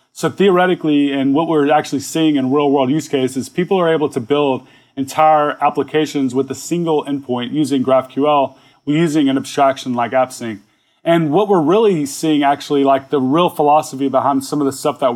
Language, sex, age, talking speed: English, male, 30-49, 180 wpm